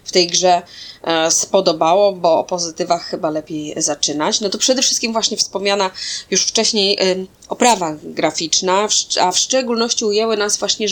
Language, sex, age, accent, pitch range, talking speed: Polish, female, 20-39, native, 175-220 Hz, 145 wpm